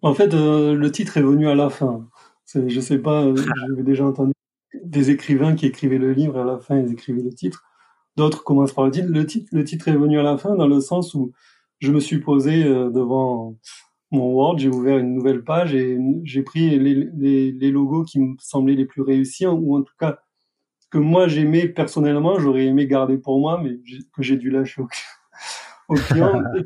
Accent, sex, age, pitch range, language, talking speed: French, male, 30-49, 135-165 Hz, French, 220 wpm